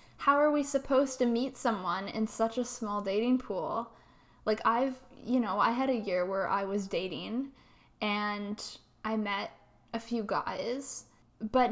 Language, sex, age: English, female, 10-29